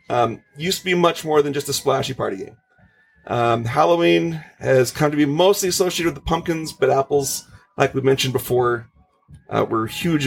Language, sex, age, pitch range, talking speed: English, male, 30-49, 125-165 Hz, 185 wpm